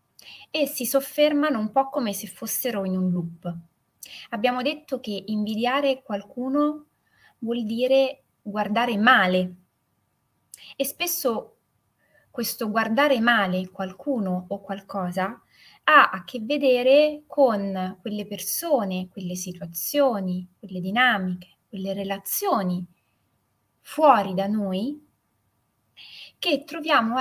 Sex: female